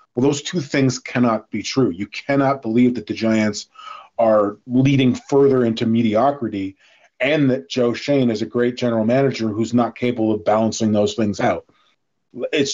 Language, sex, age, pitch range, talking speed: English, male, 40-59, 115-140 Hz, 170 wpm